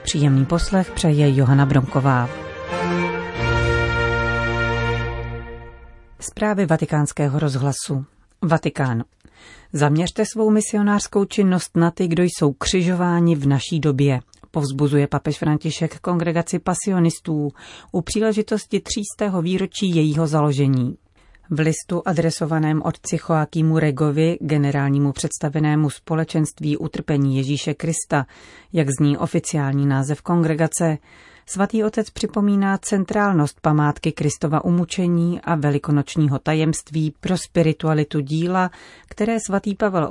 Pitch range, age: 145-175 Hz, 40-59